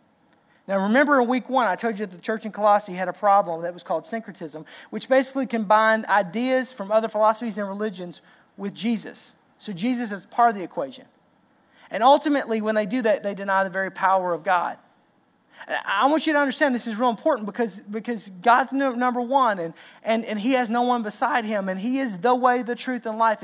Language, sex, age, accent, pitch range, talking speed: English, male, 40-59, American, 195-240 Hz, 215 wpm